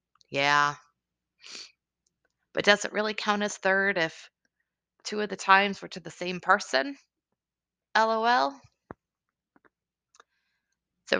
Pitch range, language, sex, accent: 135-200 Hz, English, female, American